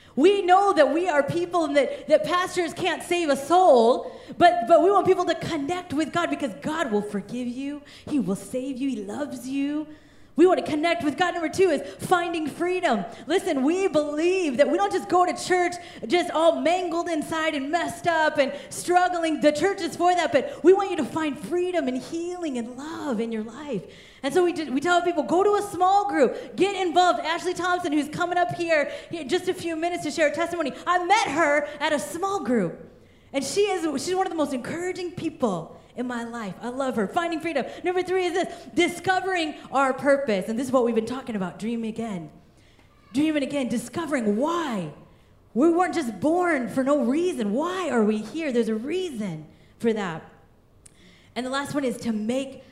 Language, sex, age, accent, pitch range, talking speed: English, female, 30-49, American, 240-345 Hz, 205 wpm